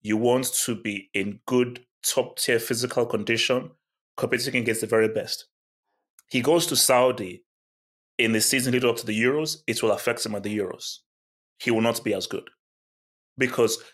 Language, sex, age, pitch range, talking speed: English, male, 30-49, 110-130 Hz, 170 wpm